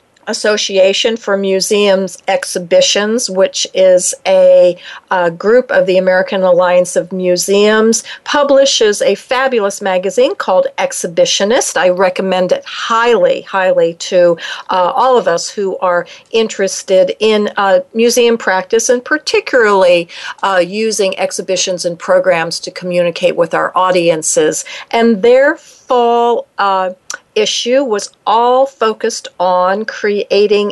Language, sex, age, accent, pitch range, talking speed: English, female, 50-69, American, 185-255 Hz, 115 wpm